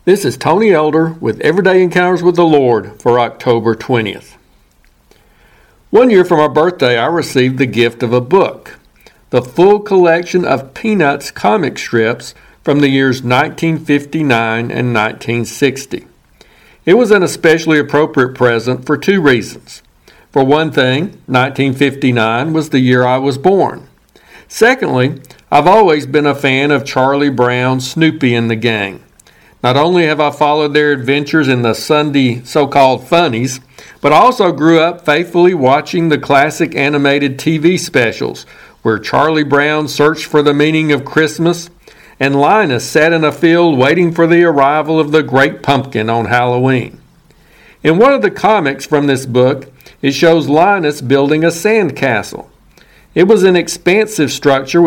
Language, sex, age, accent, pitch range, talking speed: English, male, 60-79, American, 130-160 Hz, 150 wpm